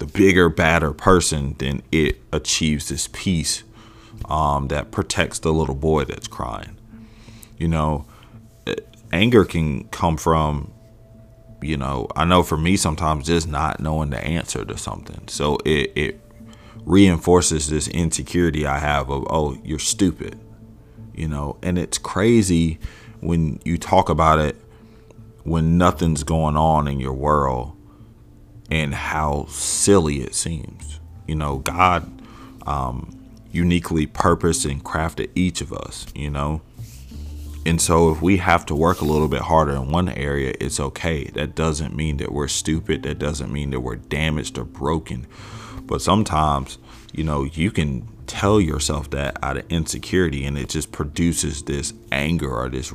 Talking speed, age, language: 150 wpm, 40-59, English